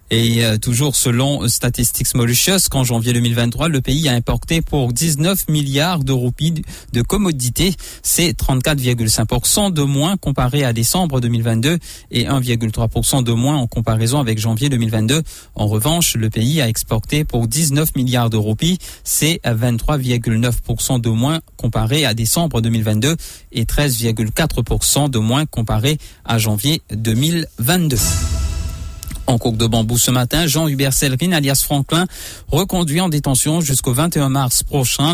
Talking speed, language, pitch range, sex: 135 wpm, English, 115-150 Hz, male